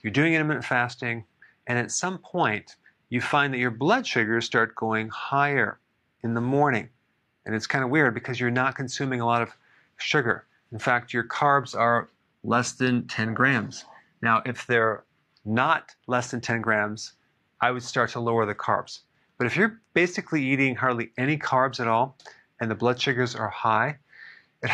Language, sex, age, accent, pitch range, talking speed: English, male, 40-59, American, 115-140 Hz, 180 wpm